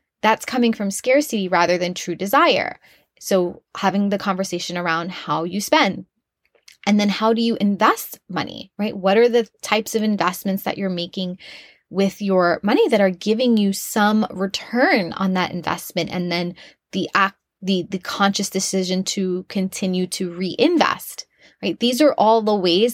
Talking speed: 160 wpm